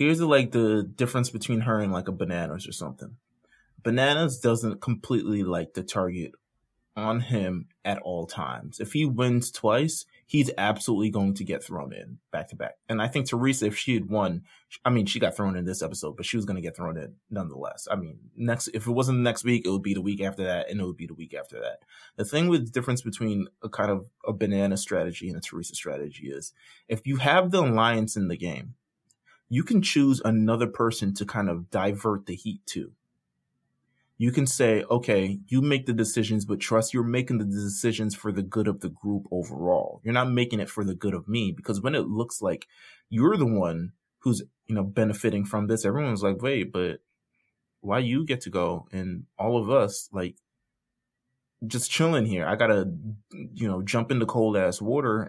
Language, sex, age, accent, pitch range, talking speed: English, male, 20-39, American, 100-120 Hz, 210 wpm